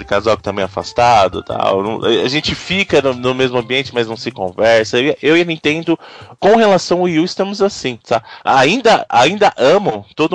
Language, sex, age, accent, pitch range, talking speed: Portuguese, male, 20-39, Brazilian, 120-180 Hz, 195 wpm